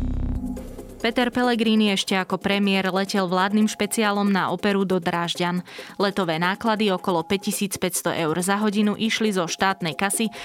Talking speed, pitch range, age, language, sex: 130 wpm, 170-200 Hz, 20-39, Slovak, female